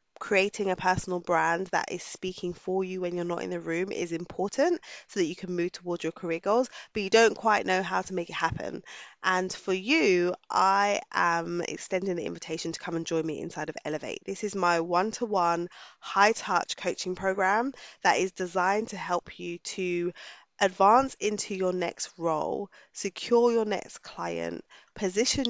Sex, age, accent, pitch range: female, 20-39, British, 175-205 Hz